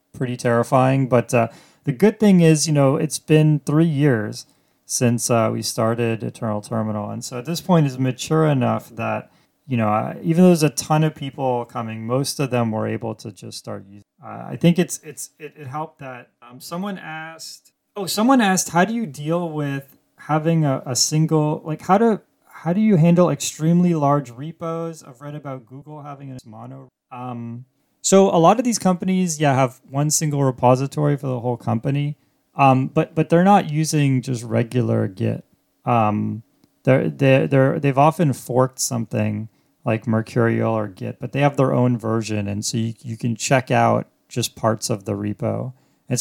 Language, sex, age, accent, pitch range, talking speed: English, male, 20-39, American, 120-160 Hz, 190 wpm